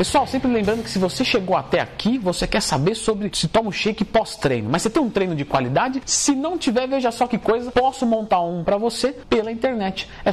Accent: Brazilian